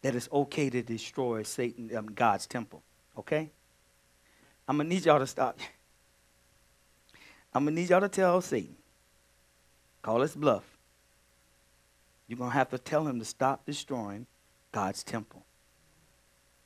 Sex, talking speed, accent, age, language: male, 145 wpm, American, 50-69, English